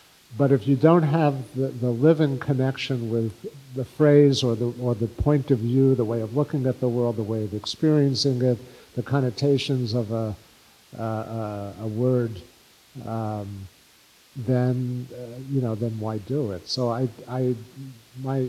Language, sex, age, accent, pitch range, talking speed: English, male, 50-69, American, 120-150 Hz, 170 wpm